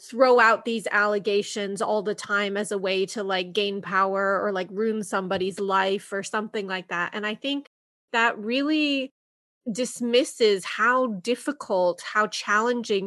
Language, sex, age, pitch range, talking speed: English, female, 20-39, 195-235 Hz, 150 wpm